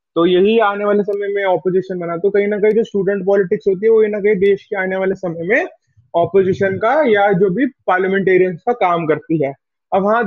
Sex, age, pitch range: male, 20-39, 180-225 Hz